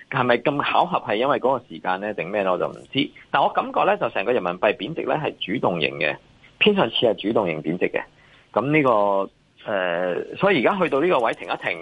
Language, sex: Chinese, male